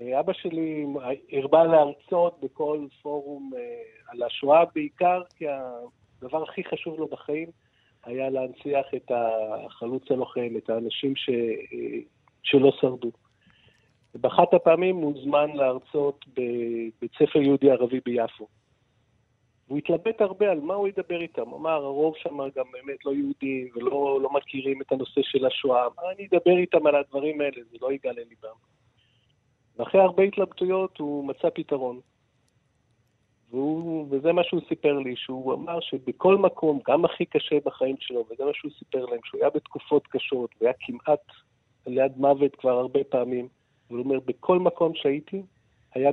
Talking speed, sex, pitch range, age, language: 145 wpm, male, 125-165 Hz, 50-69, Hebrew